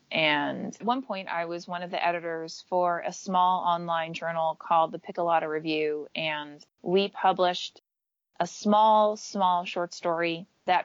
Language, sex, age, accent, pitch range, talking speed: English, female, 30-49, American, 165-195 Hz, 155 wpm